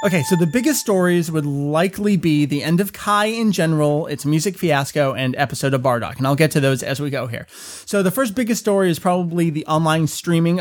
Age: 30-49